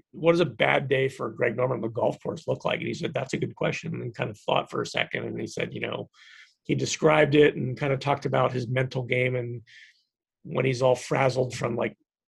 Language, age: English, 40-59